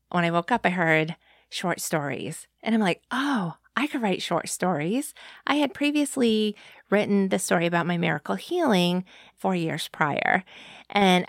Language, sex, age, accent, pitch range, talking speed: English, female, 30-49, American, 170-225 Hz, 165 wpm